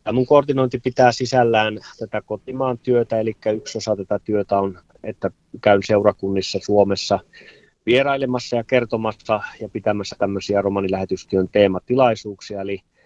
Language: Finnish